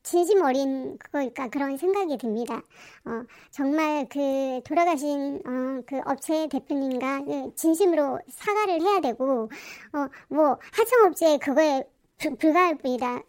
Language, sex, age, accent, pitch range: Korean, male, 40-59, native, 270-375 Hz